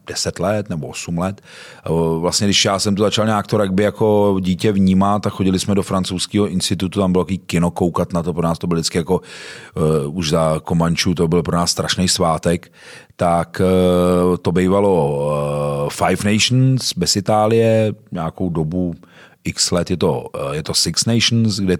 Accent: native